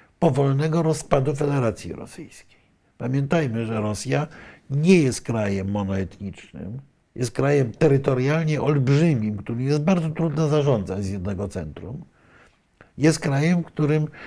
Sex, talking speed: male, 110 wpm